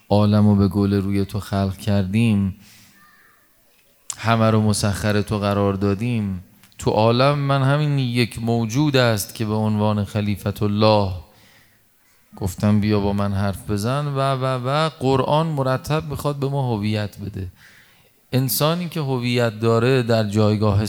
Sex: male